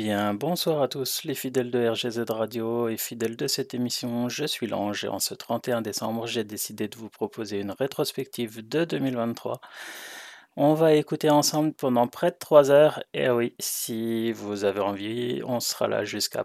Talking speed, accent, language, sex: 180 wpm, French, French, male